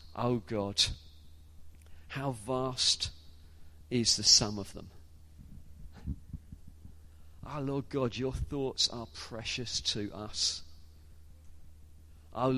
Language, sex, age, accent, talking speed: English, male, 40-59, British, 90 wpm